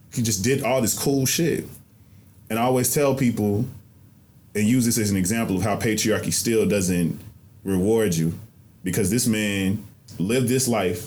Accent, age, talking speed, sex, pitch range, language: American, 20-39, 170 wpm, male, 100-115 Hz, English